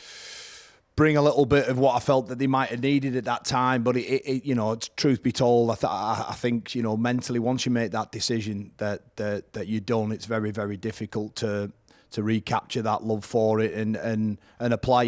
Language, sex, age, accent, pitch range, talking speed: English, male, 30-49, British, 110-120 Hz, 230 wpm